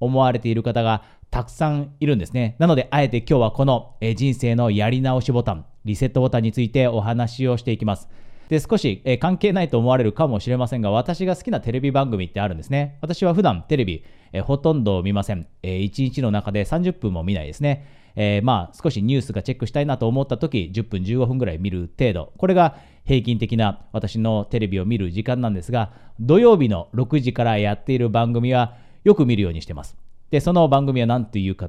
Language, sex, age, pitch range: Japanese, male, 40-59, 105-140 Hz